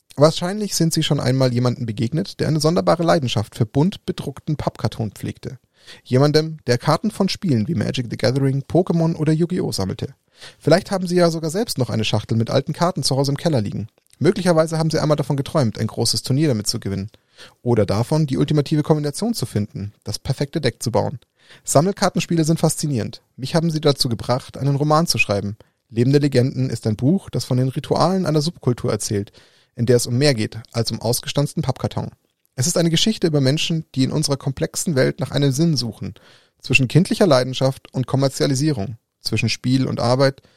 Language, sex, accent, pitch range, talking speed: German, male, German, 120-160 Hz, 190 wpm